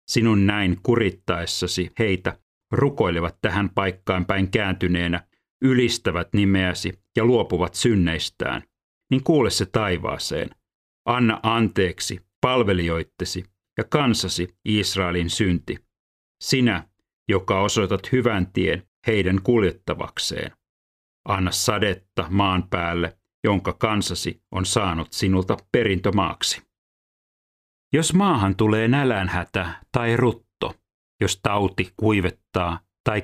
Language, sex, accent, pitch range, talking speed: Finnish, male, native, 90-115 Hz, 95 wpm